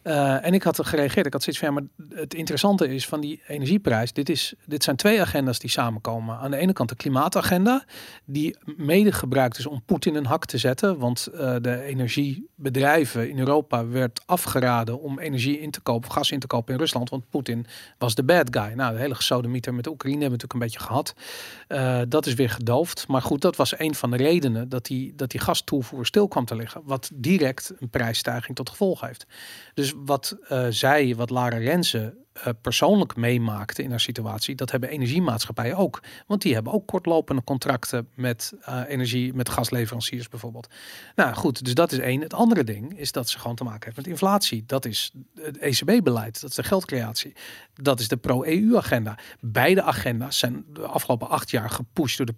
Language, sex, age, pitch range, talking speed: Dutch, male, 40-59, 120-155 Hz, 205 wpm